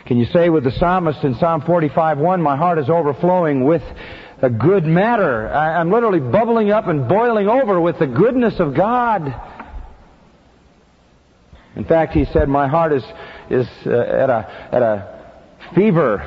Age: 50-69